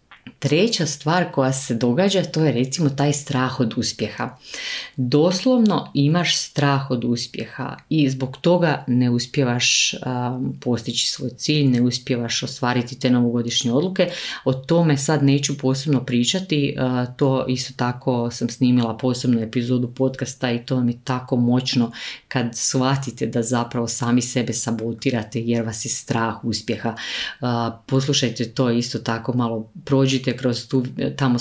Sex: female